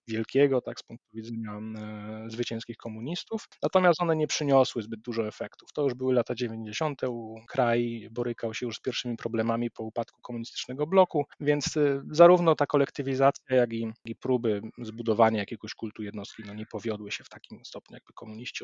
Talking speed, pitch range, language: 165 wpm, 110-135 Hz, Polish